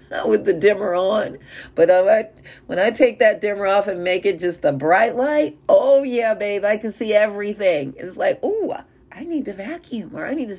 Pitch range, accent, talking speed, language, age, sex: 165-265 Hz, American, 210 wpm, English, 40-59, female